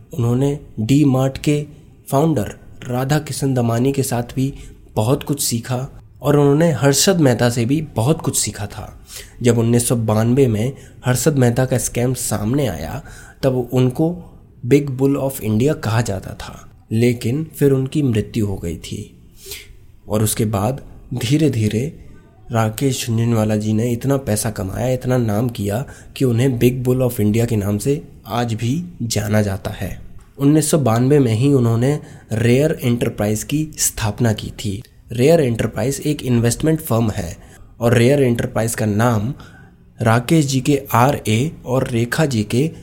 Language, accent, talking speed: Hindi, native, 150 wpm